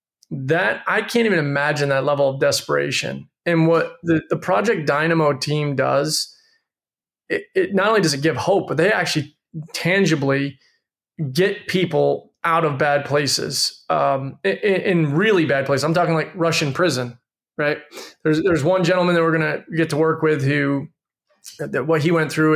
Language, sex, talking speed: English, male, 170 wpm